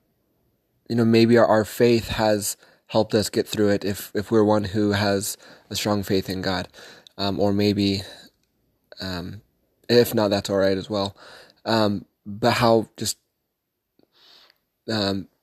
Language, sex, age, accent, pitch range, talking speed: English, male, 20-39, American, 100-110 Hz, 150 wpm